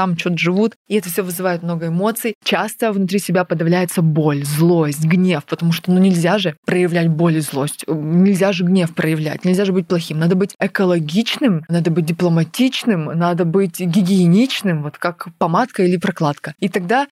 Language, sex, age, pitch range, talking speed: Russian, female, 20-39, 170-215 Hz, 170 wpm